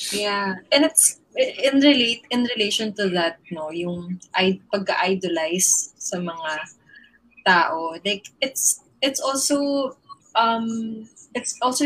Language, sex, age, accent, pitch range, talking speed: English, female, 20-39, Filipino, 185-230 Hz, 120 wpm